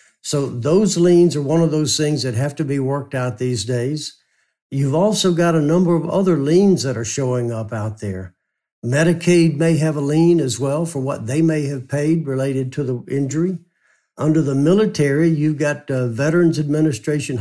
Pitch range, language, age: 130-155 Hz, English, 60-79